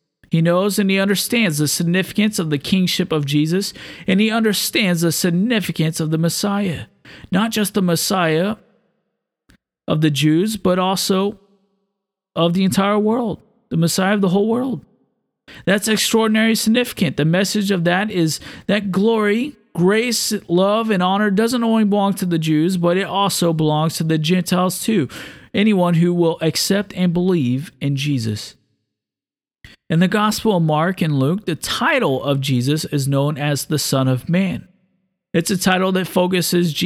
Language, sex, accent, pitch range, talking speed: English, male, American, 155-195 Hz, 160 wpm